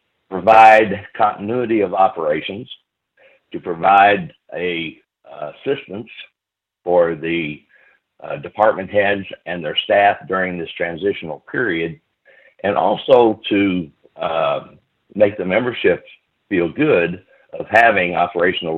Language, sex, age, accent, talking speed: English, male, 60-79, American, 100 wpm